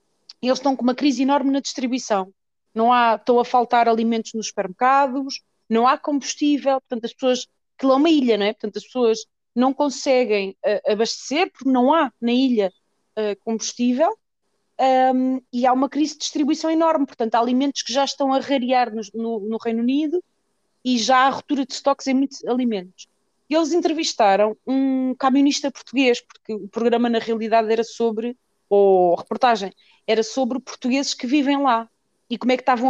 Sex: female